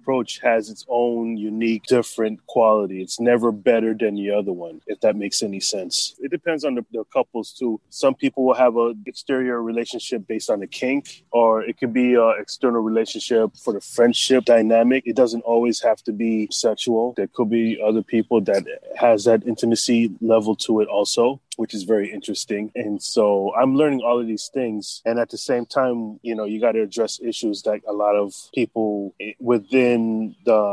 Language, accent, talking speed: English, American, 195 wpm